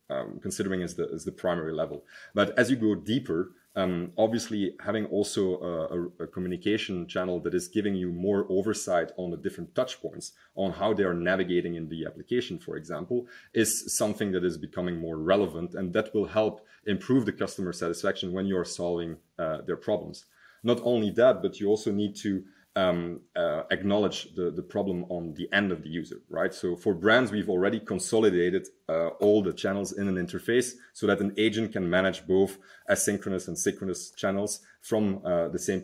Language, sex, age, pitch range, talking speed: English, male, 30-49, 90-105 Hz, 190 wpm